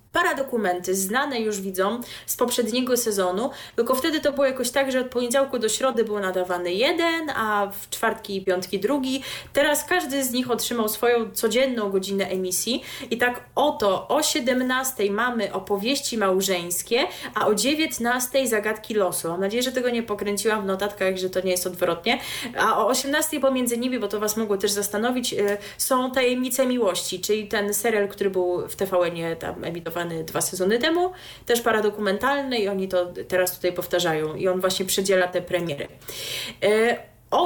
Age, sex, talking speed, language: 20-39, female, 170 wpm, Polish